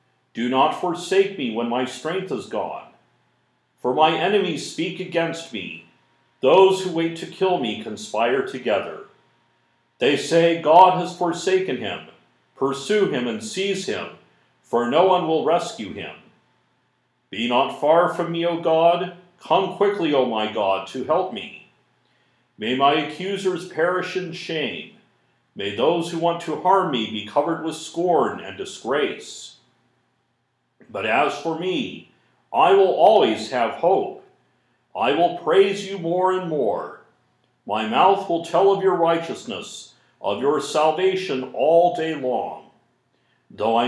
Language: English